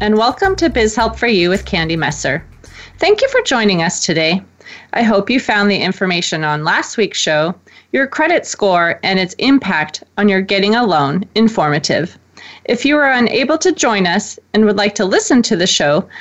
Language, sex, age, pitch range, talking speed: English, female, 30-49, 190-280 Hz, 195 wpm